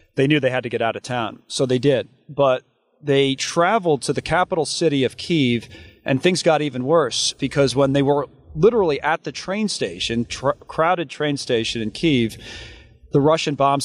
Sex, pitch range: male, 120-145 Hz